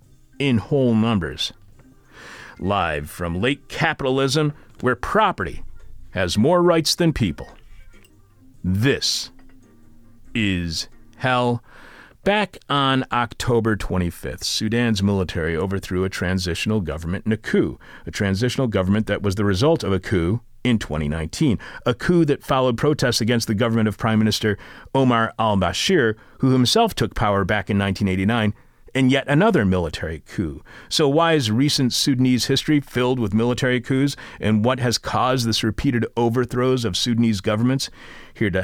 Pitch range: 95-125 Hz